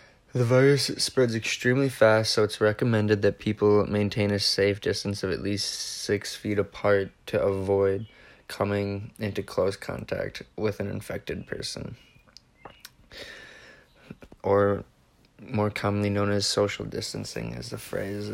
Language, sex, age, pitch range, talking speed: English, male, 20-39, 100-110 Hz, 130 wpm